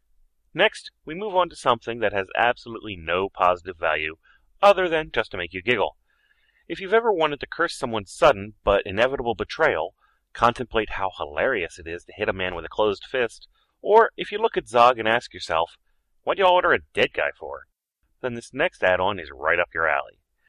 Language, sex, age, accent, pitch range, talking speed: English, male, 30-49, American, 90-150 Hz, 200 wpm